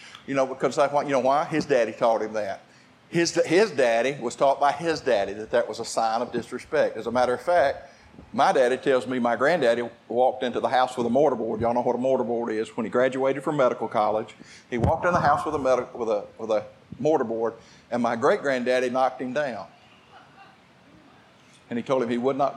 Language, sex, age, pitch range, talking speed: English, male, 50-69, 120-140 Hz, 225 wpm